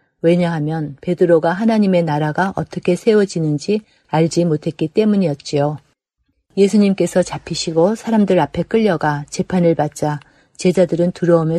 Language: Korean